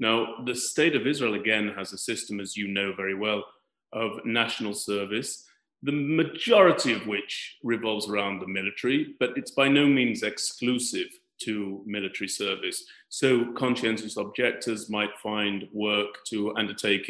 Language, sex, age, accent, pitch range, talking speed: English, male, 30-49, British, 105-130 Hz, 145 wpm